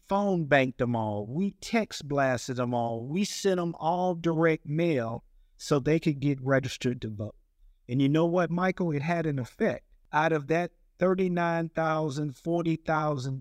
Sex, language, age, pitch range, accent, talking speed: male, English, 50-69, 130-170 Hz, American, 160 wpm